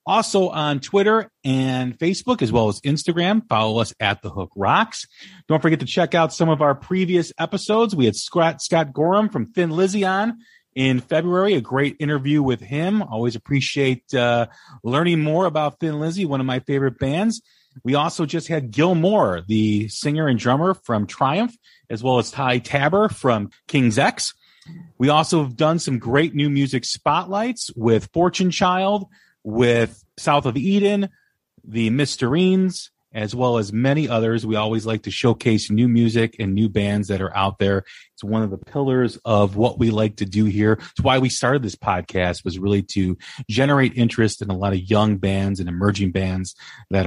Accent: American